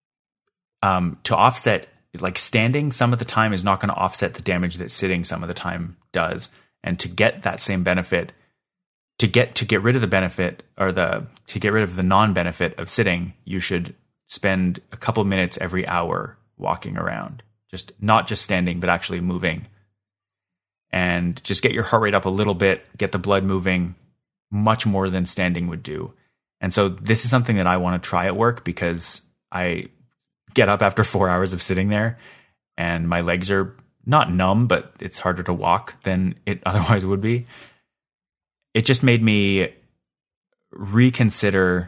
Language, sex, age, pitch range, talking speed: English, male, 30-49, 90-110 Hz, 185 wpm